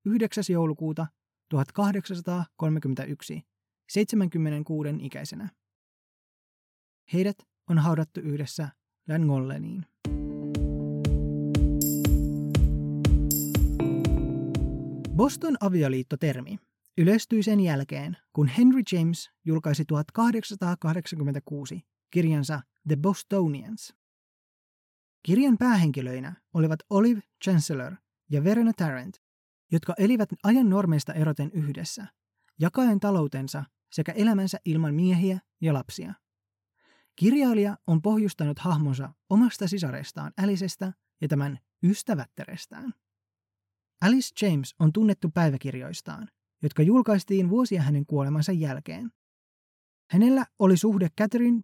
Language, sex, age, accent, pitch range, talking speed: Finnish, male, 20-39, native, 135-200 Hz, 80 wpm